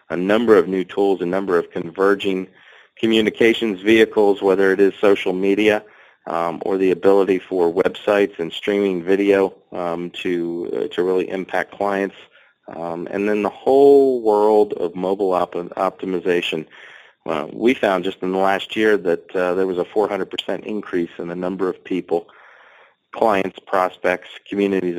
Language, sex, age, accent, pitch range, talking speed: English, male, 40-59, American, 90-100 Hz, 155 wpm